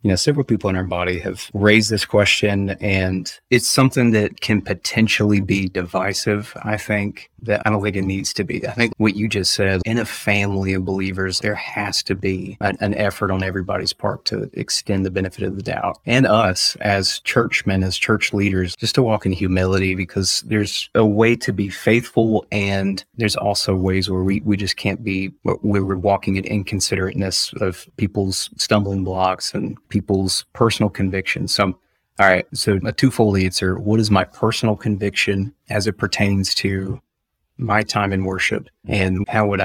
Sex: male